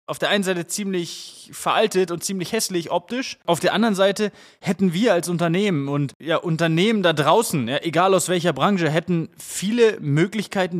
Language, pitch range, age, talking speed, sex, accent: German, 135-180 Hz, 20-39, 170 wpm, male, German